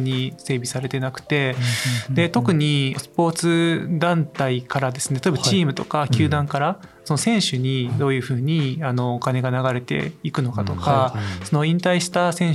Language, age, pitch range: Japanese, 20-39, 130-165 Hz